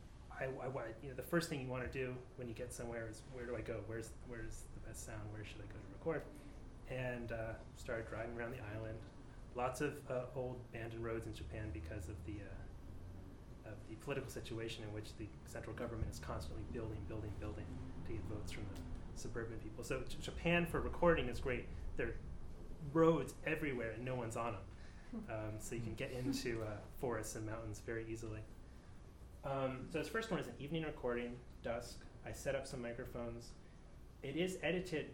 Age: 30-49